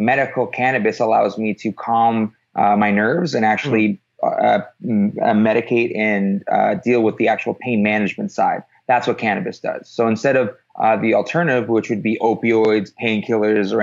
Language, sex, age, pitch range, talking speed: English, male, 20-39, 105-115 Hz, 175 wpm